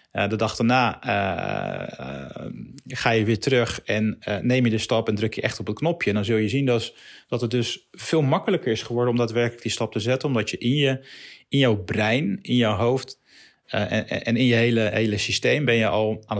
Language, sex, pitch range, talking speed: Dutch, male, 110-135 Hz, 235 wpm